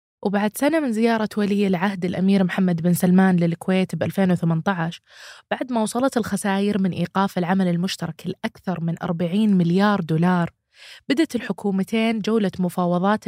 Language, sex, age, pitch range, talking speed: Arabic, female, 20-39, 175-225 Hz, 130 wpm